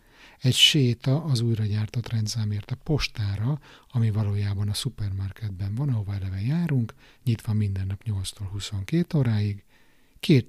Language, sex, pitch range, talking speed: Hungarian, male, 105-135 Hz, 125 wpm